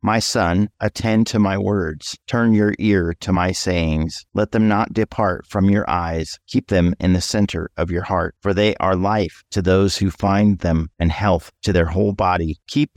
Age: 40-59